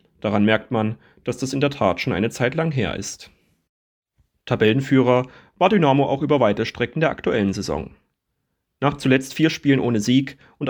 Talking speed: 175 wpm